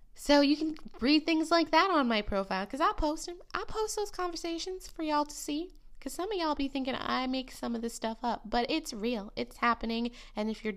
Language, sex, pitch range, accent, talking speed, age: English, female, 200-290 Hz, American, 240 wpm, 20-39